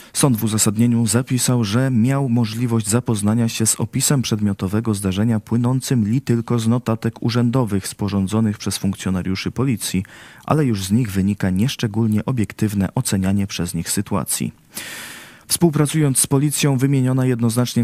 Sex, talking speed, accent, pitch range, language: male, 130 wpm, native, 100-120 Hz, Polish